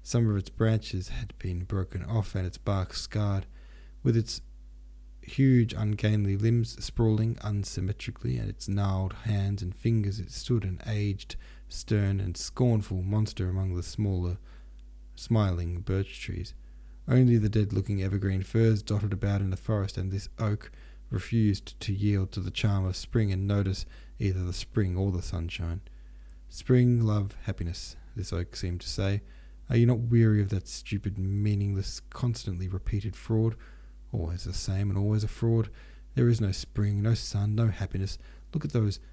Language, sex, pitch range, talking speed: English, male, 90-110 Hz, 160 wpm